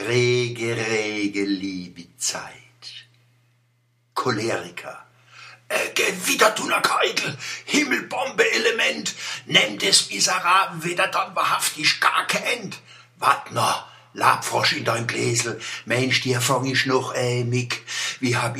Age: 60-79